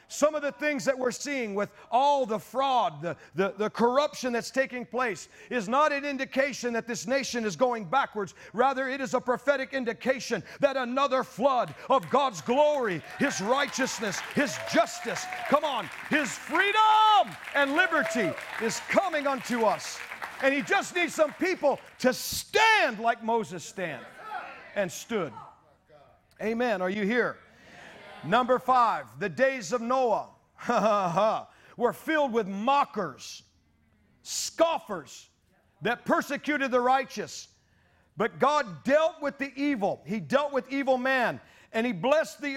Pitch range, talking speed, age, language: 195-275 Hz, 140 wpm, 50-69, English